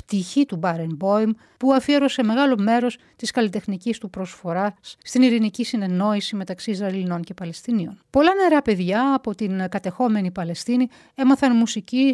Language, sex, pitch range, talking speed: Greek, female, 190-245 Hz, 140 wpm